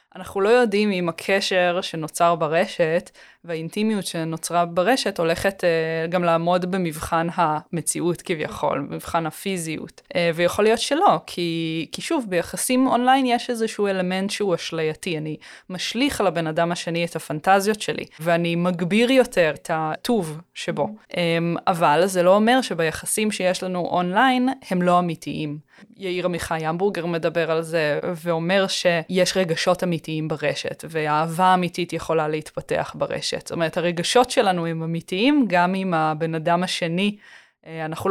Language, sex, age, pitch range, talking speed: Hebrew, female, 20-39, 165-190 Hz, 140 wpm